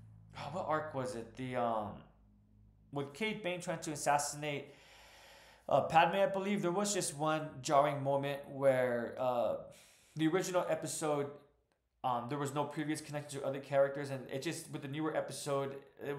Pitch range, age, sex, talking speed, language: 135-160 Hz, 20-39, male, 165 wpm, English